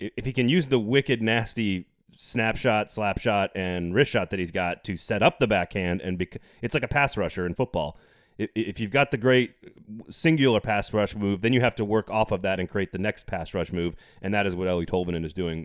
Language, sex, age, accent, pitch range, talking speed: English, male, 30-49, American, 95-130 Hz, 240 wpm